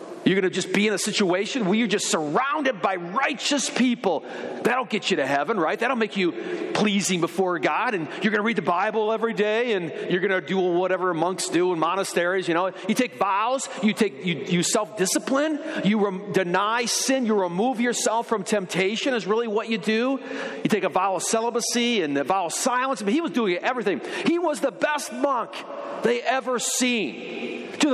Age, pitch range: 40-59, 195-265 Hz